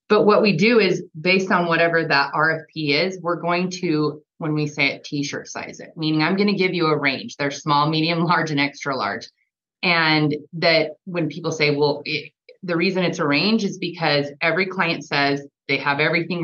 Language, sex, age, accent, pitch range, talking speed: English, female, 30-49, American, 145-175 Hz, 200 wpm